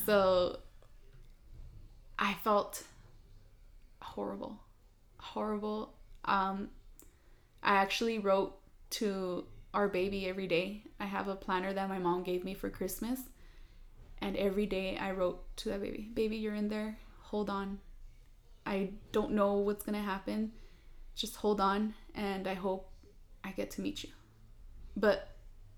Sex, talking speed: female, 135 wpm